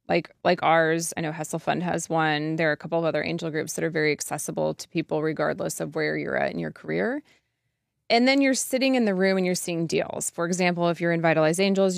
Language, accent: English, American